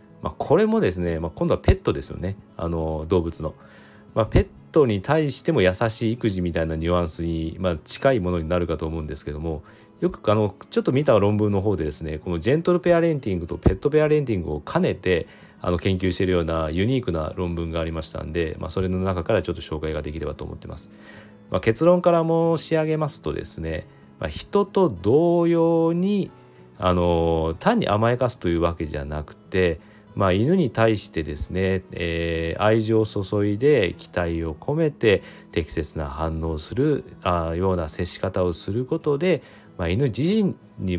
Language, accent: Japanese, native